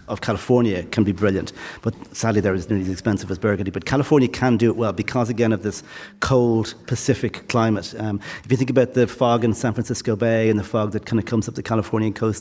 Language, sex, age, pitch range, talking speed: English, male, 40-59, 110-130 Hz, 235 wpm